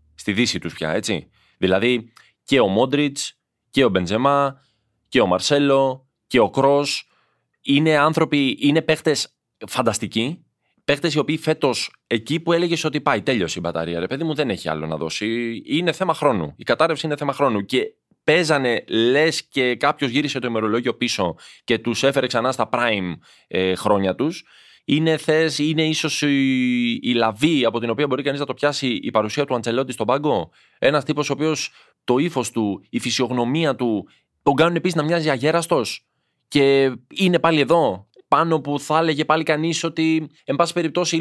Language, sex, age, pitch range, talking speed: Greek, male, 20-39, 115-155 Hz, 170 wpm